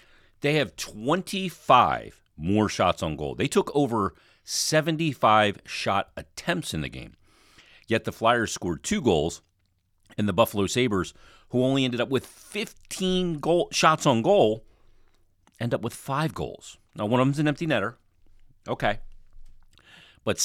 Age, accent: 40-59, American